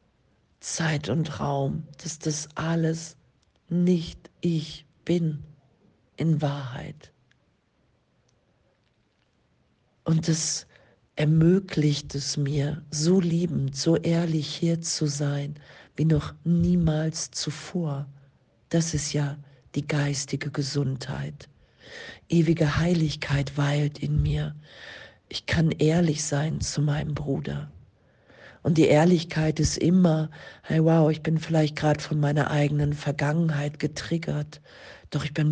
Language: German